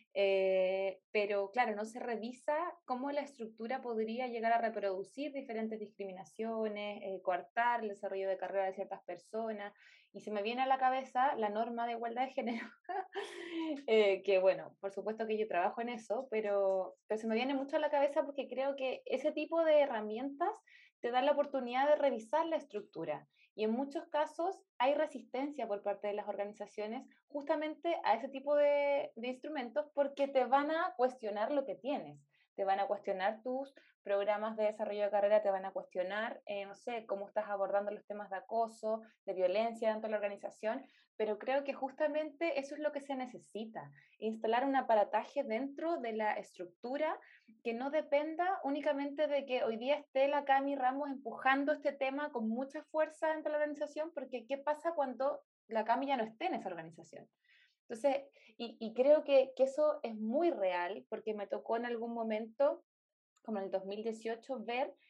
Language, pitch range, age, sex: Spanish, 210-285 Hz, 20-39, female